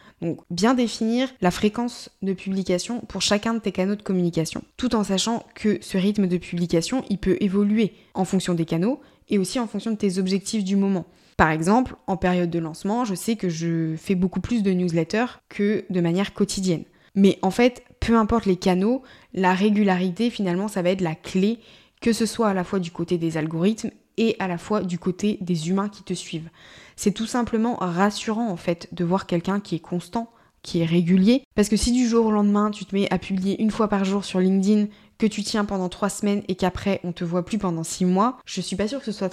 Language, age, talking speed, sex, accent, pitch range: French, 20-39, 225 wpm, female, French, 185-220 Hz